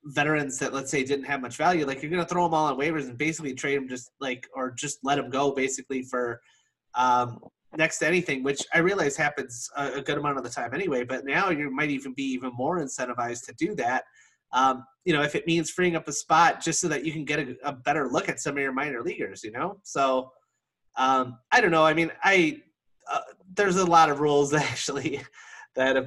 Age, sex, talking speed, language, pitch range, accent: 30-49, male, 235 wpm, English, 125-150 Hz, American